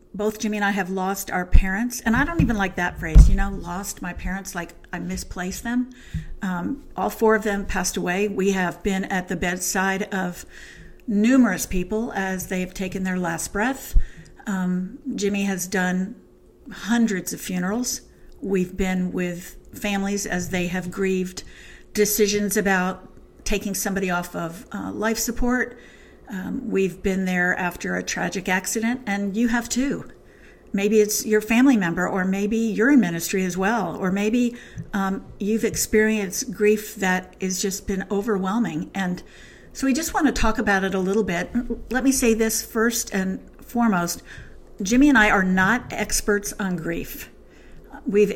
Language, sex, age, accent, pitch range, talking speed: English, female, 50-69, American, 185-225 Hz, 165 wpm